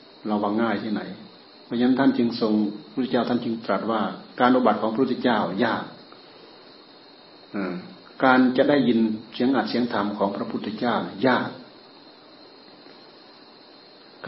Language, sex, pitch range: Thai, male, 110-140 Hz